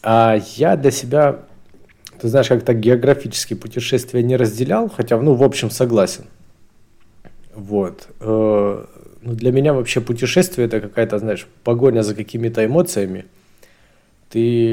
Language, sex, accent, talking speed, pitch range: Ukrainian, male, native, 125 wpm, 105-125 Hz